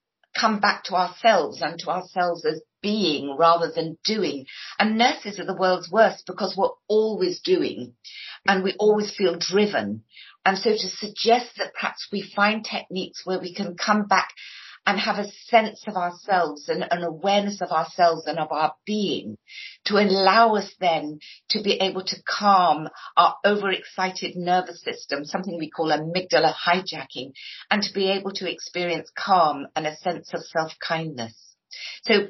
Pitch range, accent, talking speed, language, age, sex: 170-210 Hz, British, 160 wpm, English, 50-69, female